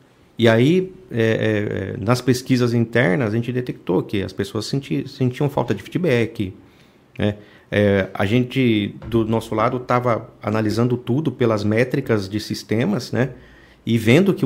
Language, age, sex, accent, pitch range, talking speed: Portuguese, 50-69, male, Brazilian, 110-130 Hz, 150 wpm